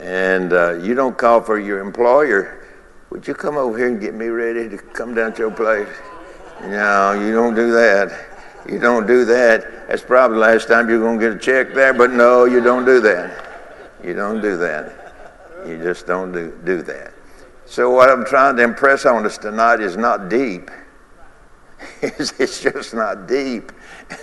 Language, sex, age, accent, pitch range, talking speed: English, male, 60-79, American, 100-120 Hz, 185 wpm